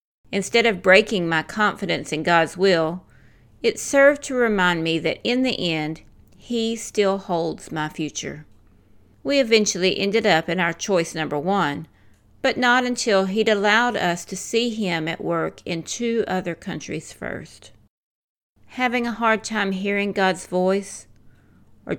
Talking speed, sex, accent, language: 150 wpm, female, American, English